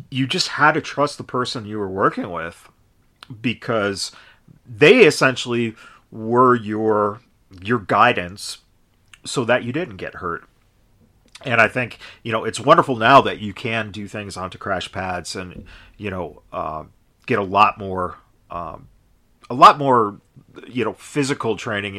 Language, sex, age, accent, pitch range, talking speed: English, male, 40-59, American, 95-125 Hz, 155 wpm